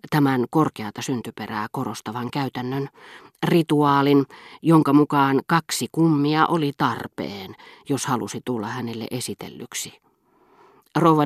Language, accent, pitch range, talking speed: Finnish, native, 130-165 Hz, 95 wpm